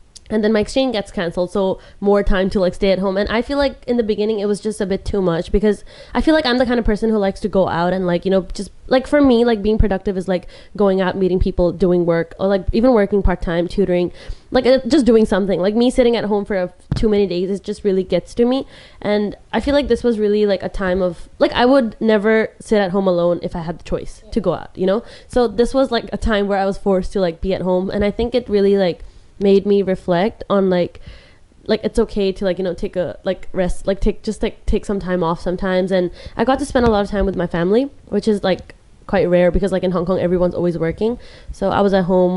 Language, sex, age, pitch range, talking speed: English, female, 20-39, 180-215 Hz, 270 wpm